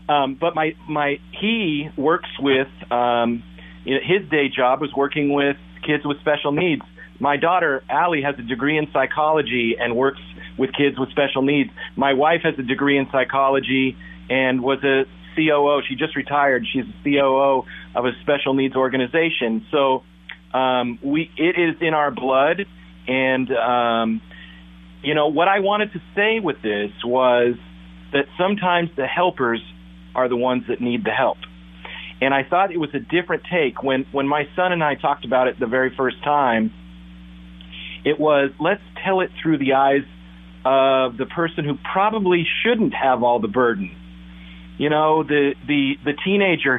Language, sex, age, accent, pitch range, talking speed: English, male, 40-59, American, 120-155 Hz, 170 wpm